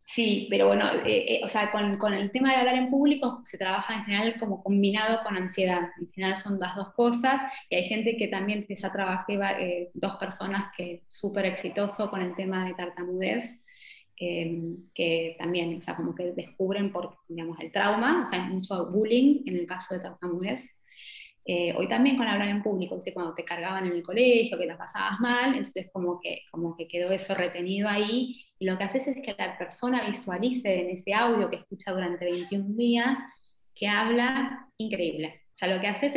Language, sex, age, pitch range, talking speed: Spanish, female, 20-39, 180-235 Hz, 200 wpm